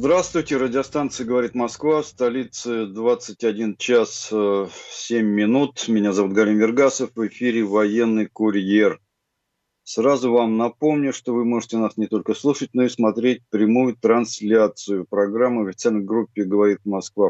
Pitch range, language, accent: 100-120 Hz, Russian, native